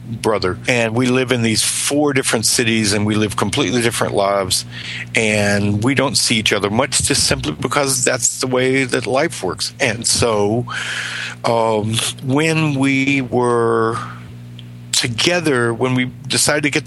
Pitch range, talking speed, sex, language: 105-135 Hz, 160 wpm, male, English